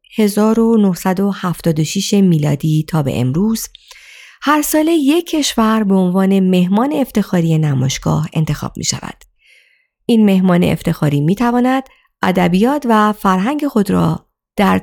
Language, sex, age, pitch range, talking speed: Persian, female, 50-69, 175-235 Hz, 115 wpm